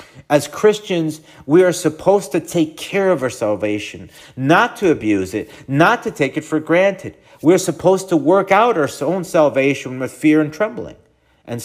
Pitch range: 120-175 Hz